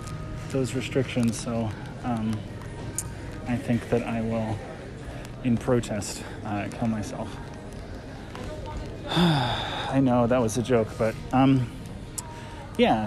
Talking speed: 105 wpm